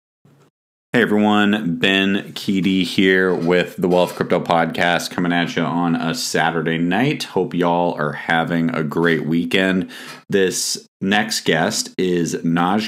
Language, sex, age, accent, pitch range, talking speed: English, male, 30-49, American, 80-90 Hz, 135 wpm